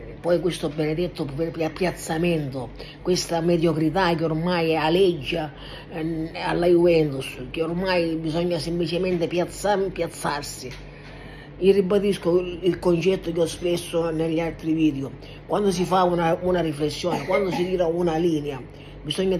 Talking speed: 120 wpm